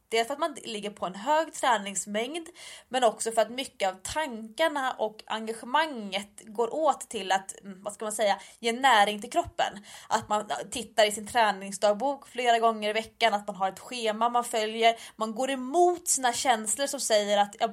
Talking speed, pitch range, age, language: 195 wpm, 205-250 Hz, 20-39, English